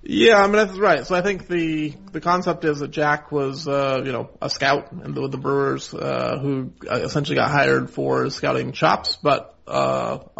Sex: male